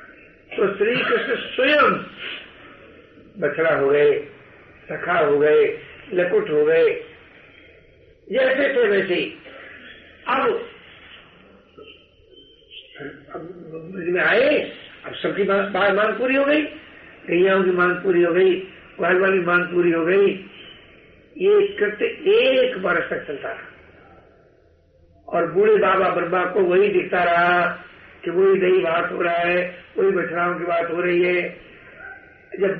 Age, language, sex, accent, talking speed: 60-79, Hindi, male, native, 120 wpm